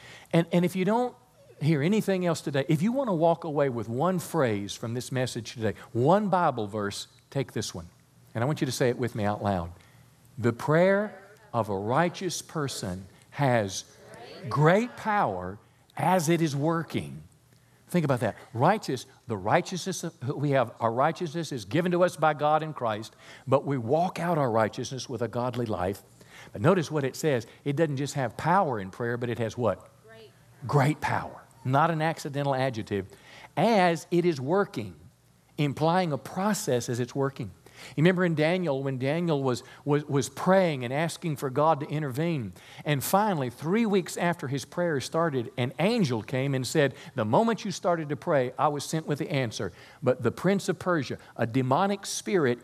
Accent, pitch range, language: American, 125-170 Hz, English